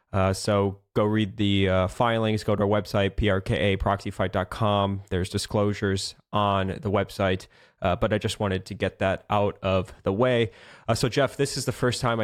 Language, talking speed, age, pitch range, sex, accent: English, 180 wpm, 20-39, 100-115 Hz, male, American